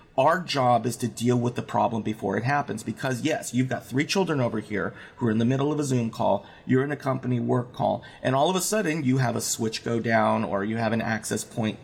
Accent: American